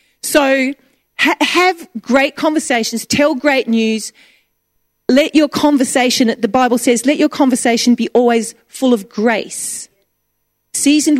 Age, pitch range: 40-59, 225-290 Hz